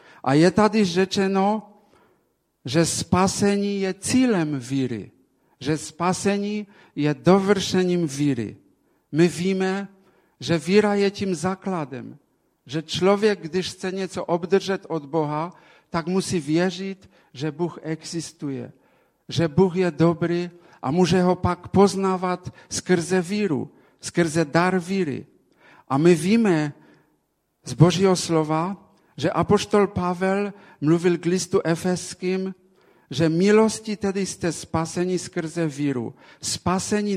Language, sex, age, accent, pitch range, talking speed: Czech, male, 50-69, Polish, 155-190 Hz, 115 wpm